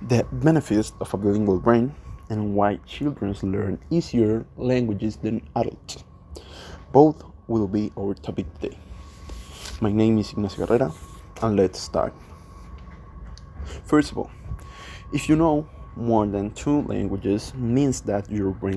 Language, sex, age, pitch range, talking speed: English, male, 20-39, 80-115 Hz, 135 wpm